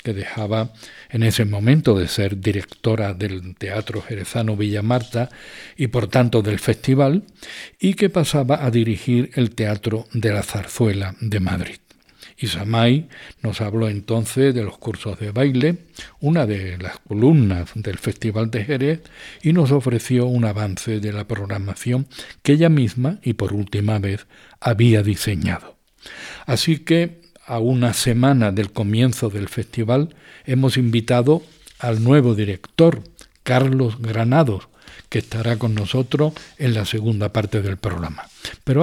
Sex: male